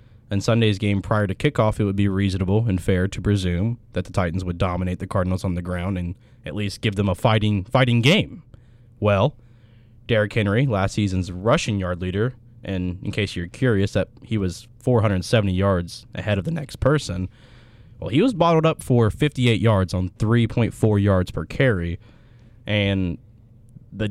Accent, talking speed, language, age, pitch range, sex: American, 175 wpm, English, 20-39, 100-120 Hz, male